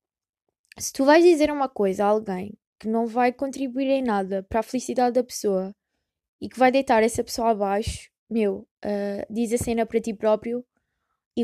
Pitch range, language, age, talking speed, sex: 220-260 Hz, Portuguese, 20-39, 185 wpm, female